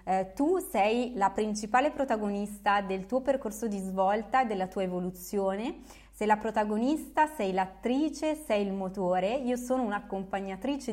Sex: female